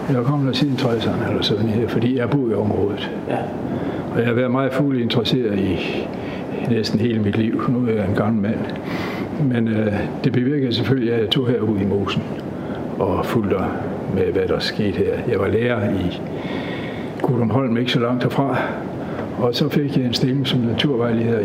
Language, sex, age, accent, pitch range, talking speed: Danish, male, 60-79, native, 110-130 Hz, 180 wpm